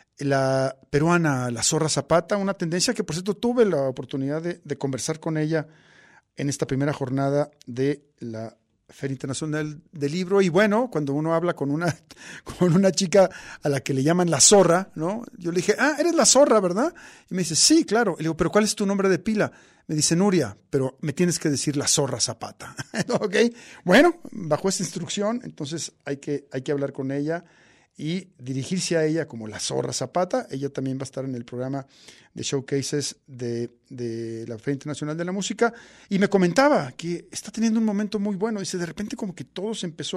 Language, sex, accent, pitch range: Spanish, male, Mexican, 135-190 Hz